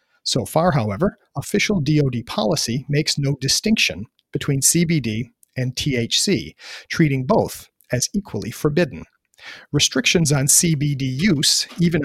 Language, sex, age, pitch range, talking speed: English, male, 40-59, 125-165 Hz, 115 wpm